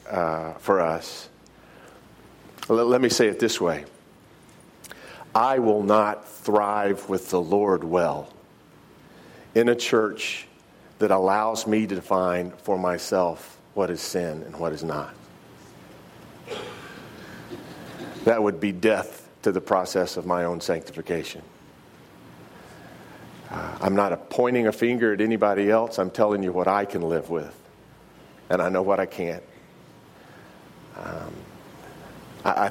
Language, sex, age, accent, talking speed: English, male, 50-69, American, 130 wpm